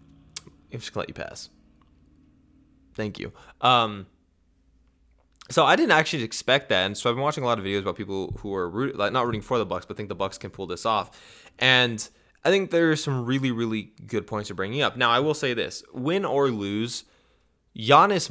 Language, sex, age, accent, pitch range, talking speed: English, male, 20-39, American, 95-135 Hz, 210 wpm